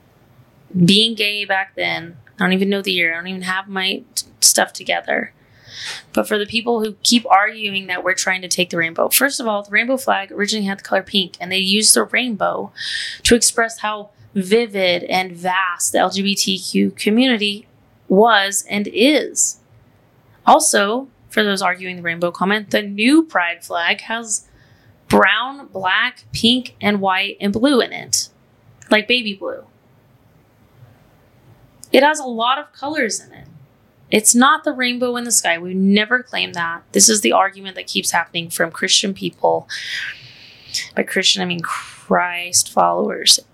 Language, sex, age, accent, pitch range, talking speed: English, female, 20-39, American, 145-215 Hz, 165 wpm